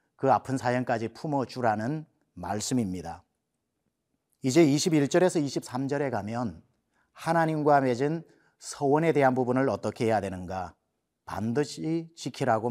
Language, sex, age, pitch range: Korean, male, 40-59, 115-145 Hz